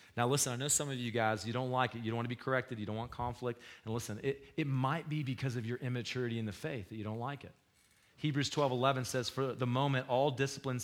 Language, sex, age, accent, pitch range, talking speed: English, male, 40-59, American, 110-140 Hz, 265 wpm